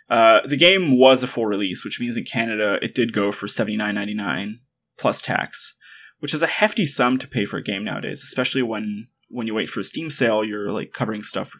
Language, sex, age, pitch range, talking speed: English, male, 20-39, 115-140 Hz, 240 wpm